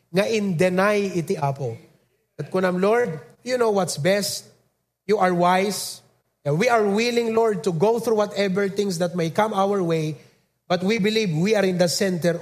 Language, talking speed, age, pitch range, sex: English, 180 wpm, 30-49, 180-225 Hz, male